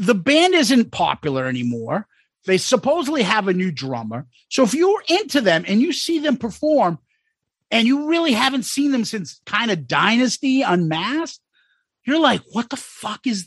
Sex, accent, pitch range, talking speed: male, American, 165-255 Hz, 170 wpm